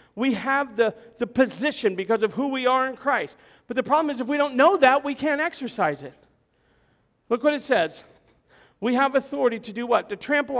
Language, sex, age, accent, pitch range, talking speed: English, male, 50-69, American, 230-285 Hz, 210 wpm